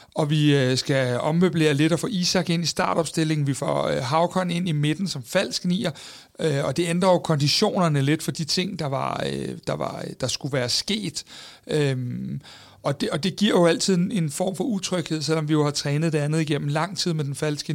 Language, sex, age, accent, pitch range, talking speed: Danish, male, 60-79, native, 145-170 Hz, 210 wpm